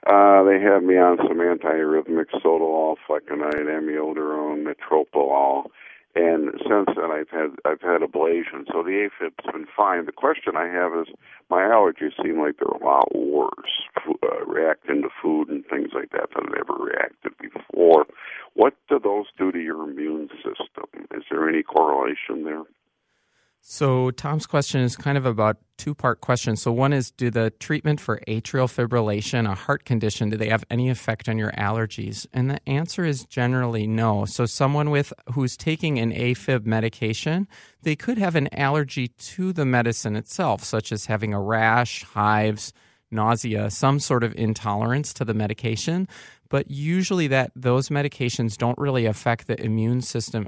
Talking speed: 165 wpm